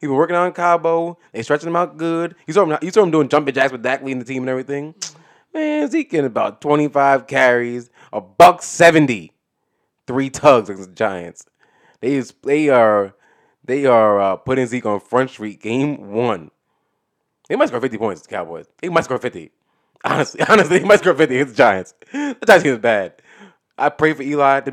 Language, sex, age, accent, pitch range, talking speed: English, male, 20-39, American, 115-145 Hz, 205 wpm